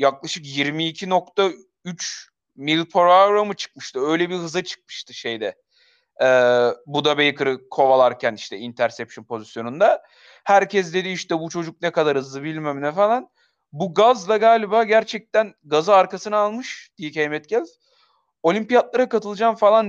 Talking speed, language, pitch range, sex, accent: 125 wpm, Turkish, 150-195 Hz, male, native